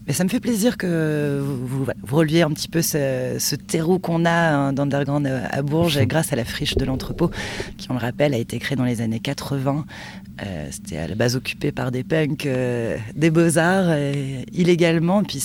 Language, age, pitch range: French, 30-49, 125-155 Hz